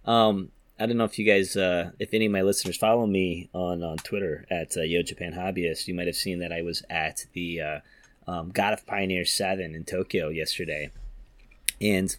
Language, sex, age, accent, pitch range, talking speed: English, male, 30-49, American, 95-115 Hz, 205 wpm